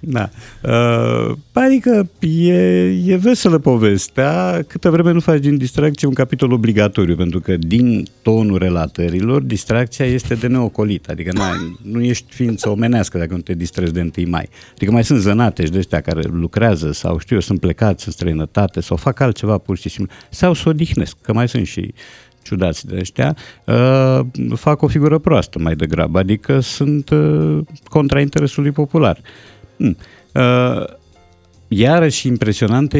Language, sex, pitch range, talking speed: Romanian, male, 95-135 Hz, 155 wpm